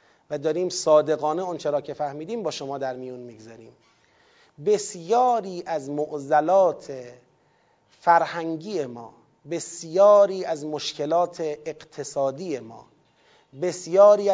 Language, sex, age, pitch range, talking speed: Persian, male, 30-49, 145-200 Hz, 90 wpm